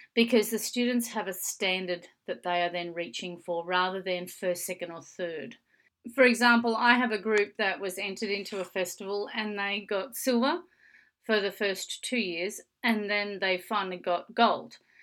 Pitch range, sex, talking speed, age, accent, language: 185-235 Hz, female, 180 wpm, 40-59, Australian, English